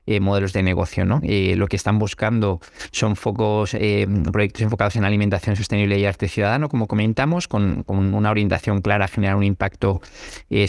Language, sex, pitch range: Spanish, male, 100-110 Hz